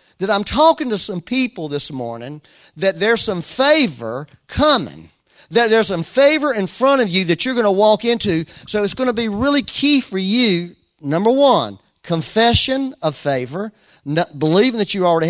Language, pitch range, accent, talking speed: English, 165-235 Hz, American, 175 wpm